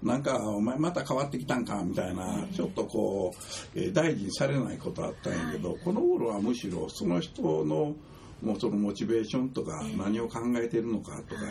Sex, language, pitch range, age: male, Japanese, 95-155 Hz, 60-79